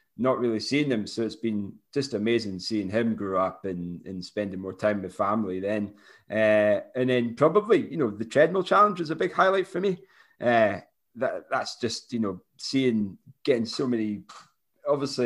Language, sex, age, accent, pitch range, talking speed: English, male, 30-49, British, 105-120 Hz, 185 wpm